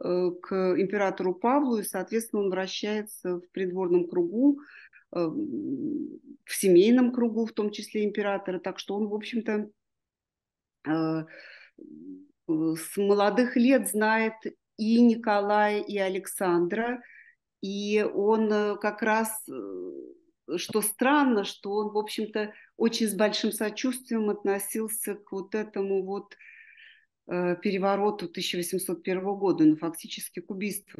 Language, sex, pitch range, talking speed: Russian, female, 185-250 Hz, 110 wpm